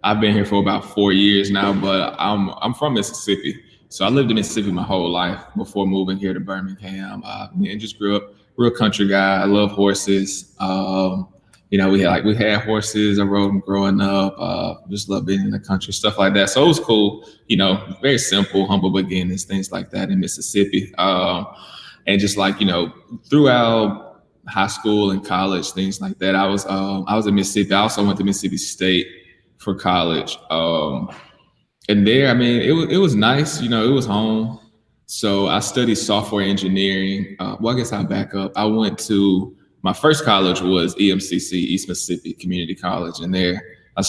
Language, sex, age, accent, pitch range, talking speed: English, male, 20-39, American, 95-105 Hz, 200 wpm